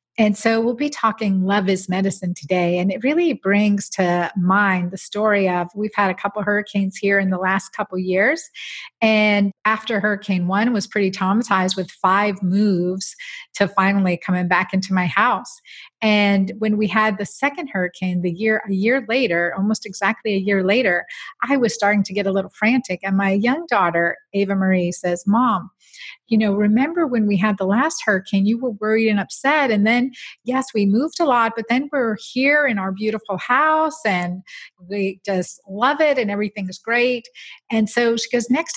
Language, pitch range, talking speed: English, 190-235 Hz, 190 wpm